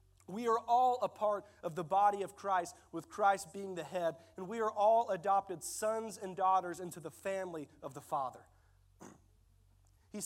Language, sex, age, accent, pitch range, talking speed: English, male, 40-59, American, 150-215 Hz, 175 wpm